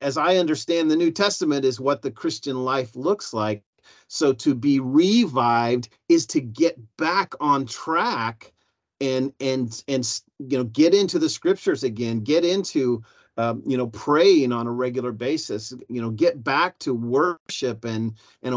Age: 40-59